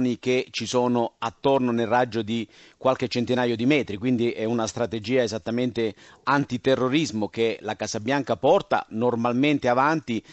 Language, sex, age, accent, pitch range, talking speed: Italian, male, 50-69, native, 110-145 Hz, 140 wpm